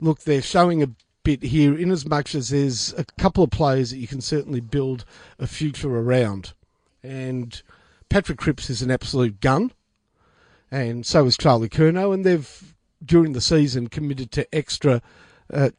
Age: 50-69